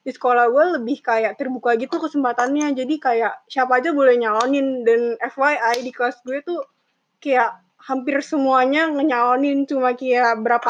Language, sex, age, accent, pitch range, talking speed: Indonesian, female, 20-39, native, 235-280 Hz, 150 wpm